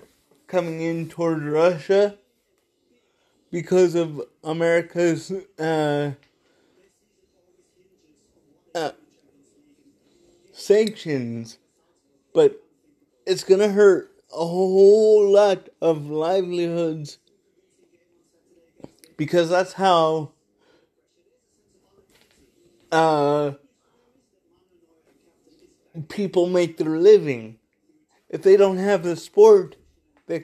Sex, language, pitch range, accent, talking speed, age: male, English, 155-200 Hz, American, 70 wpm, 20-39